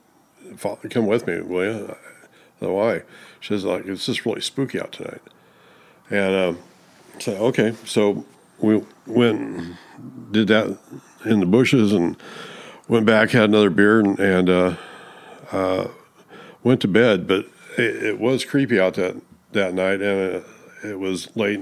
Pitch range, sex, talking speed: 90-110 Hz, male, 155 wpm